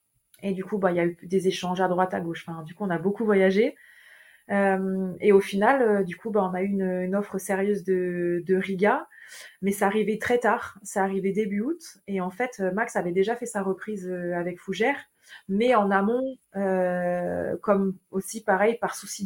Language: French